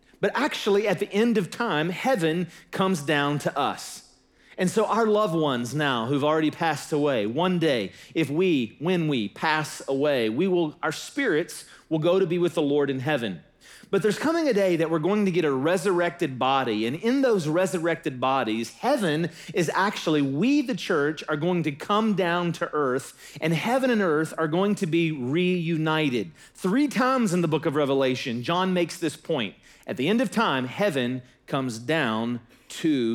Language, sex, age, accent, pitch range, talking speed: English, male, 40-59, American, 145-190 Hz, 185 wpm